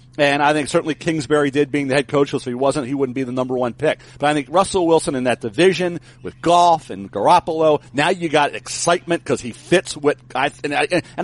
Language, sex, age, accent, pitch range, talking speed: English, male, 50-69, American, 140-195 Hz, 240 wpm